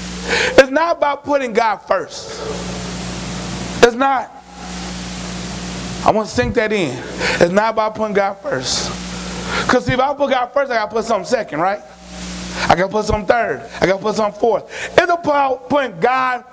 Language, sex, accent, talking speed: English, male, American, 180 wpm